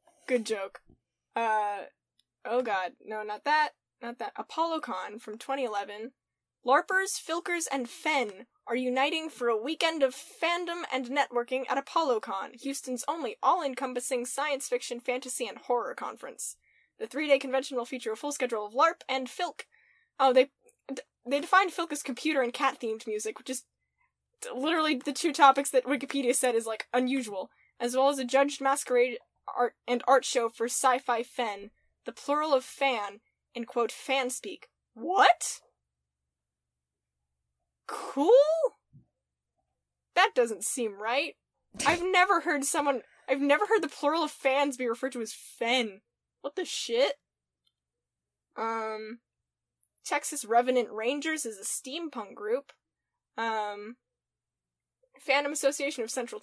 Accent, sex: American, female